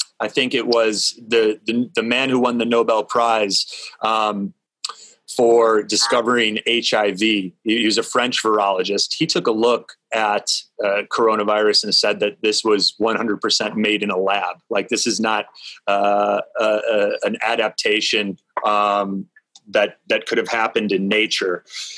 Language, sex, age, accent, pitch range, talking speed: English, male, 30-49, American, 105-135 Hz, 160 wpm